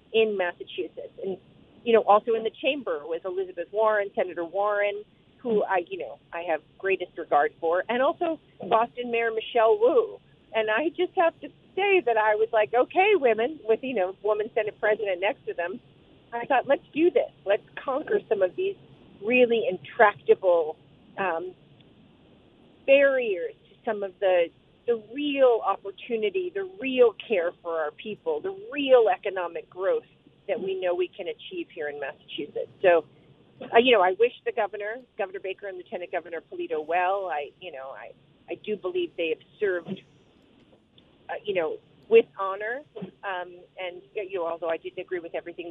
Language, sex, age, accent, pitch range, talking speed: English, female, 40-59, American, 185-290 Hz, 170 wpm